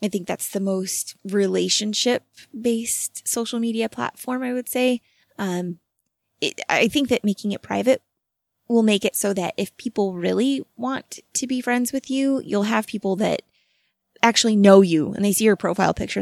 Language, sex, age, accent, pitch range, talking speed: English, female, 20-39, American, 195-235 Hz, 175 wpm